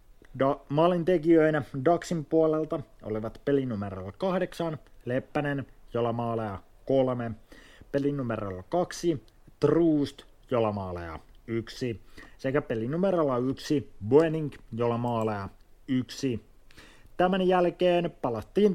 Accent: native